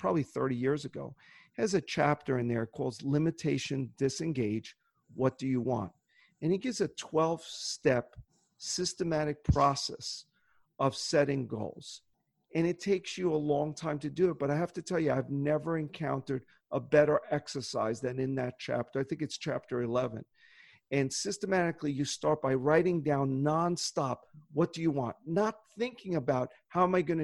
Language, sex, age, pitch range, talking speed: English, male, 40-59, 135-180 Hz, 165 wpm